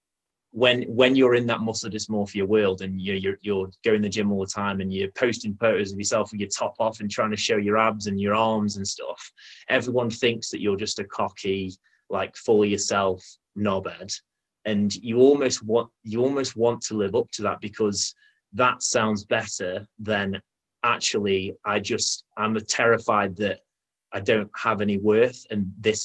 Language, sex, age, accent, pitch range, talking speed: English, male, 20-39, British, 100-115 Hz, 185 wpm